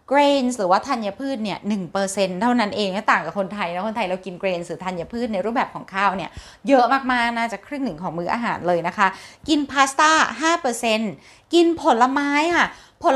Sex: female